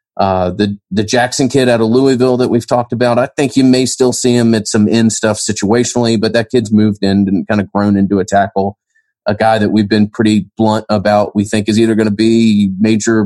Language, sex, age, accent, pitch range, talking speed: English, male, 30-49, American, 100-115 Hz, 235 wpm